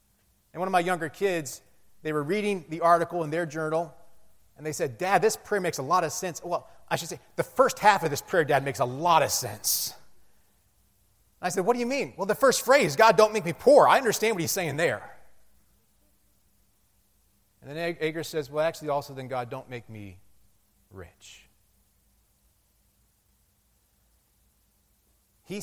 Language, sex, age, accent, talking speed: English, male, 30-49, American, 180 wpm